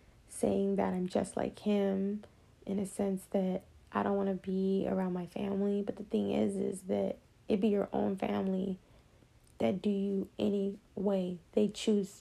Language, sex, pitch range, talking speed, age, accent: English, female, 180-215 Hz, 175 wpm, 20-39, American